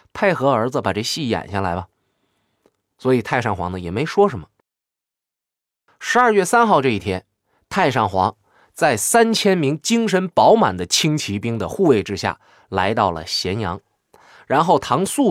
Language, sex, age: Chinese, male, 20-39